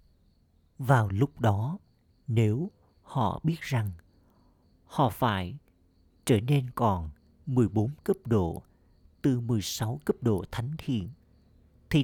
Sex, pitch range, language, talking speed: male, 95-130 Hz, Vietnamese, 110 wpm